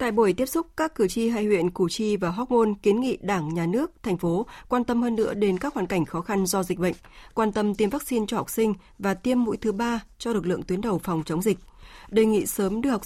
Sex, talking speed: female, 270 wpm